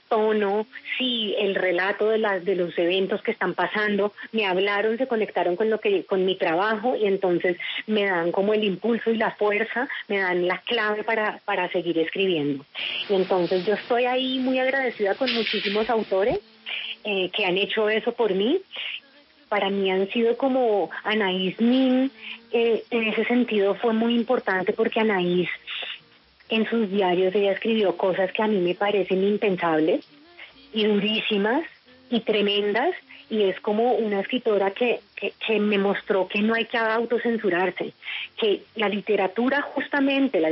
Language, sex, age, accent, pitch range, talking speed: Spanish, female, 30-49, Colombian, 195-230 Hz, 160 wpm